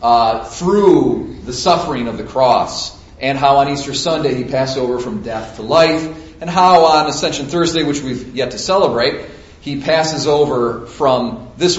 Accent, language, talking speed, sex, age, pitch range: American, English, 175 wpm, male, 40-59, 125-170 Hz